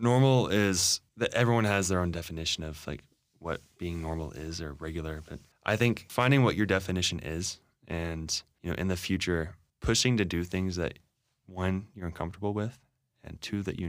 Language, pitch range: English, 85-95 Hz